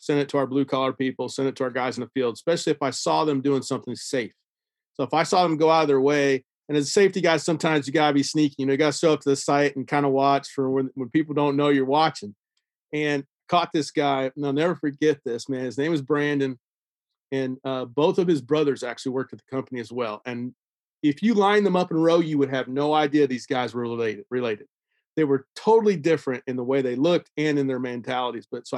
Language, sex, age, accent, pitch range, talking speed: English, male, 40-59, American, 130-165 Hz, 260 wpm